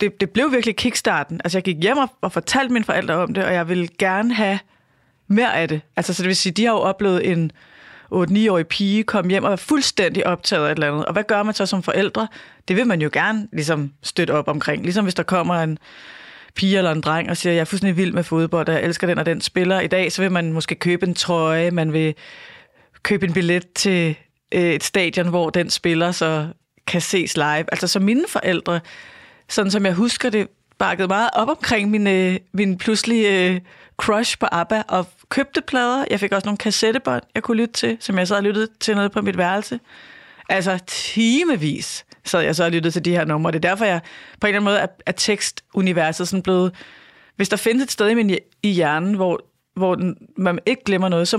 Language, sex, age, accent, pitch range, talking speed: Danish, female, 30-49, native, 170-210 Hz, 225 wpm